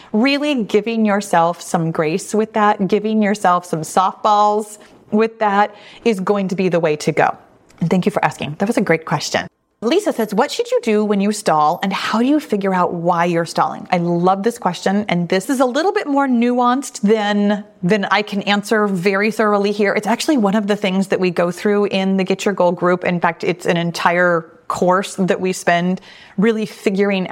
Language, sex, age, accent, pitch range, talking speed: English, female, 30-49, American, 185-225 Hz, 210 wpm